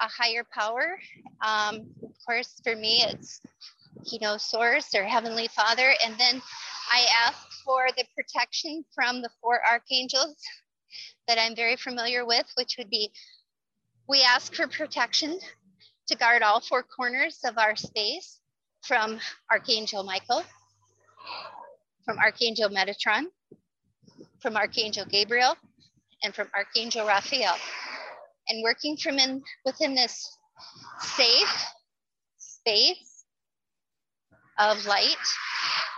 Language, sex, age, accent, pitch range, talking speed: English, female, 30-49, American, 225-280 Hz, 115 wpm